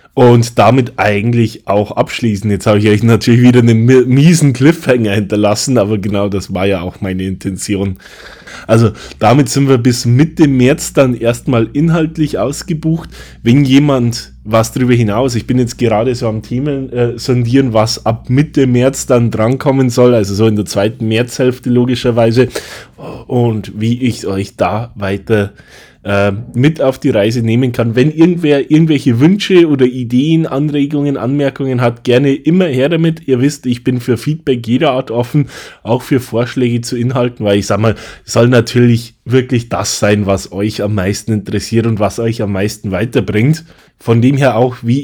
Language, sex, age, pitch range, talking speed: German, male, 20-39, 110-130 Hz, 170 wpm